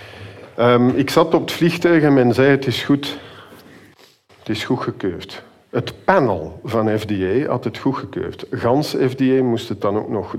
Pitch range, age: 105-120 Hz, 50-69